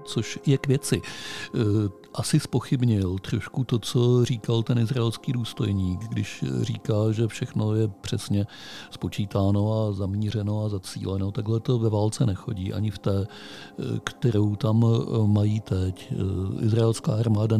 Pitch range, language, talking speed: 100-120 Hz, Czech, 130 wpm